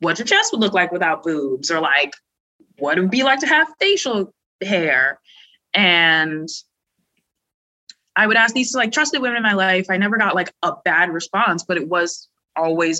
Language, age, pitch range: English, 20-39, 160-200 Hz